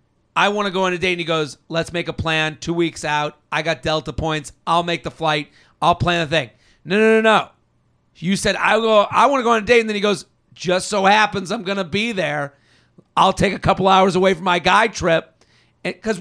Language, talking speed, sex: English, 245 wpm, male